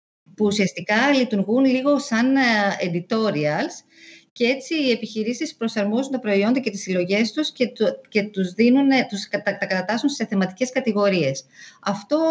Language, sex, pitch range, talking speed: Greek, female, 165-245 Hz, 130 wpm